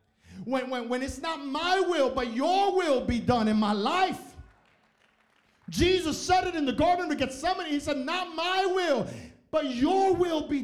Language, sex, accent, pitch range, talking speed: English, male, American, 220-290 Hz, 185 wpm